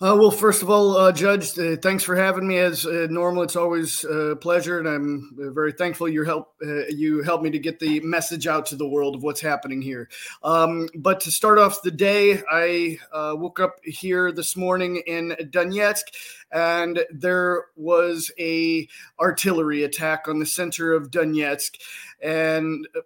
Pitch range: 160-185 Hz